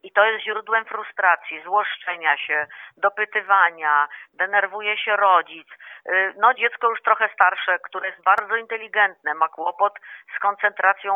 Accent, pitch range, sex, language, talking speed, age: native, 185-225 Hz, female, Polish, 130 wpm, 40-59